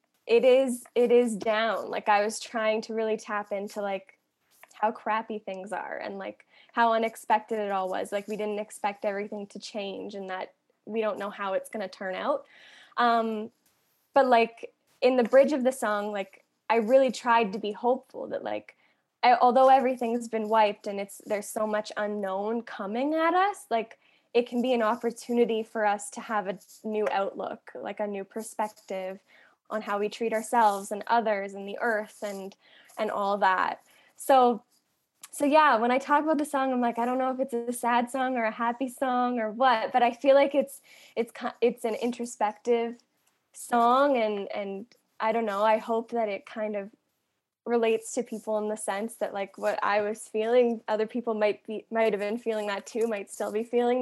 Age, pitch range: 10-29, 210-245 Hz